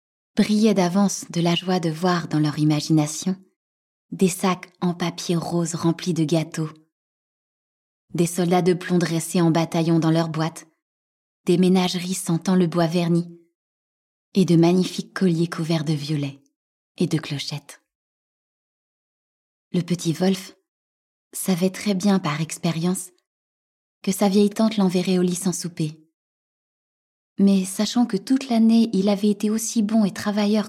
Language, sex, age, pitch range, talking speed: French, female, 20-39, 160-195 Hz, 145 wpm